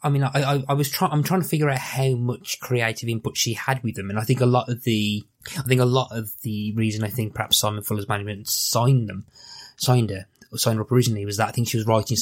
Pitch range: 105-125 Hz